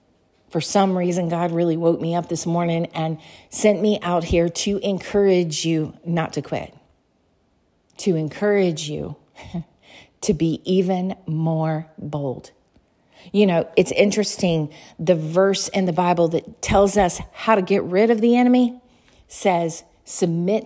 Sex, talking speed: female, 145 wpm